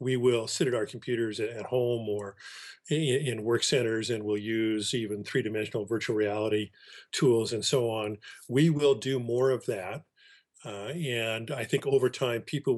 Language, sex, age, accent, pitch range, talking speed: English, male, 40-59, American, 105-130 Hz, 170 wpm